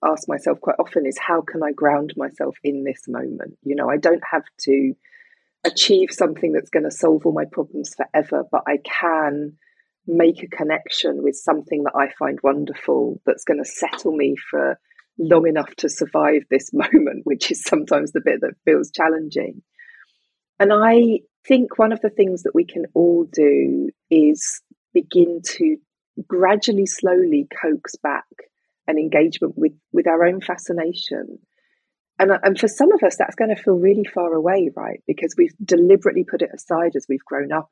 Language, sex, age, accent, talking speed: English, female, 30-49, British, 175 wpm